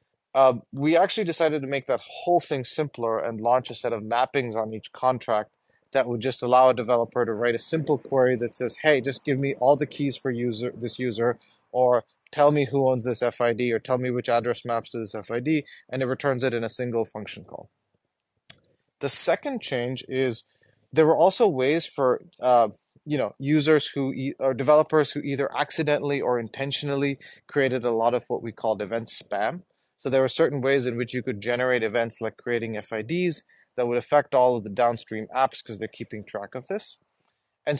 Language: English